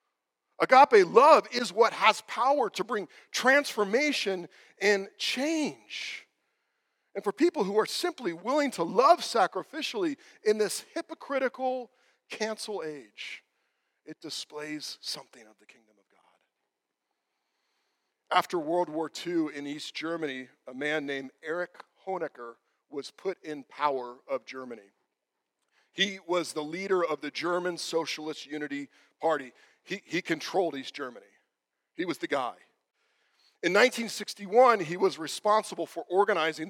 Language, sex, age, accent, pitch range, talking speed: English, male, 40-59, American, 150-230 Hz, 130 wpm